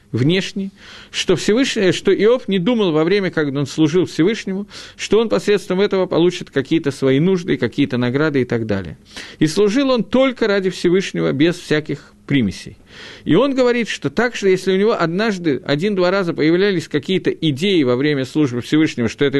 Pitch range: 145-205 Hz